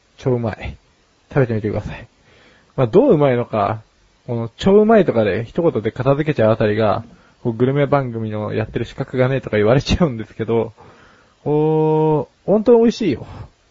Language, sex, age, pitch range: Japanese, male, 20-39, 110-145 Hz